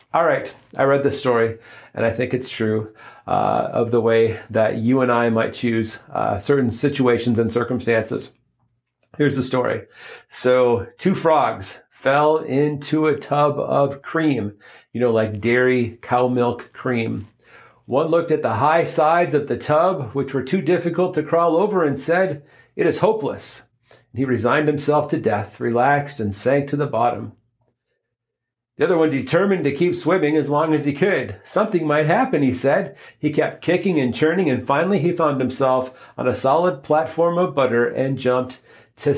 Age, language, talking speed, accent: 40-59, English, 175 wpm, American